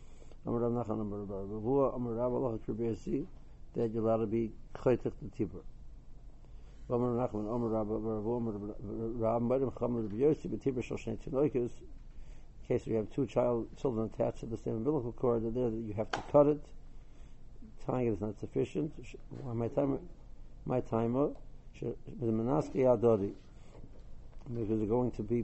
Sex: male